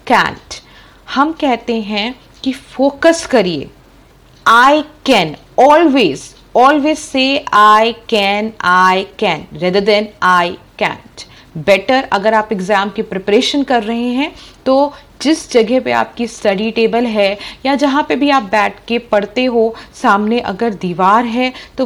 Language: Hindi